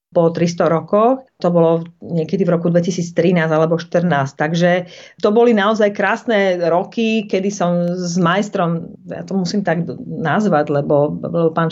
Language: Slovak